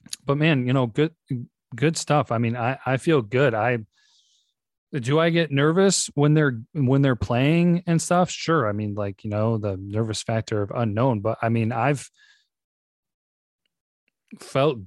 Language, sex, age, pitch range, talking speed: English, male, 30-49, 105-135 Hz, 165 wpm